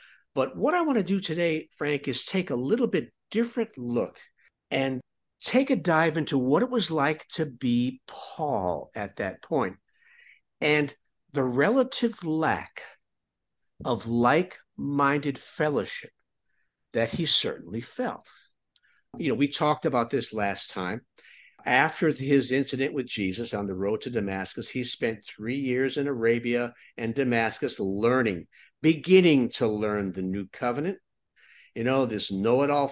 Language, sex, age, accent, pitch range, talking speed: English, male, 60-79, American, 120-160 Hz, 140 wpm